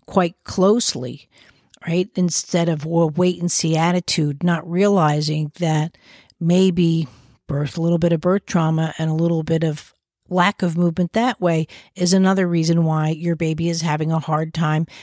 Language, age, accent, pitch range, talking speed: English, 50-69, American, 160-185 Hz, 170 wpm